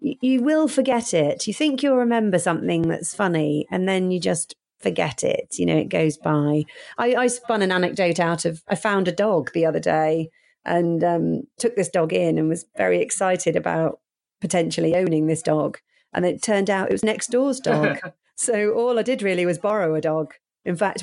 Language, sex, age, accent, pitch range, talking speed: English, female, 40-59, British, 170-240 Hz, 205 wpm